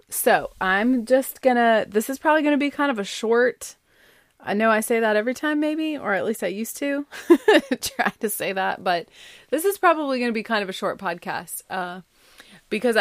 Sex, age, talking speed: female, 30-49, 210 wpm